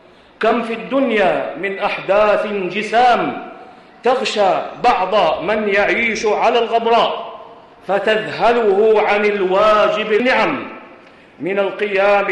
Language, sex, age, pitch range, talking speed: Arabic, male, 50-69, 195-230 Hz, 90 wpm